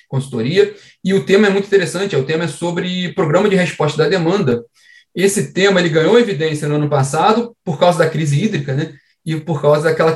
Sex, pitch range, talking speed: male, 140-195 Hz, 200 wpm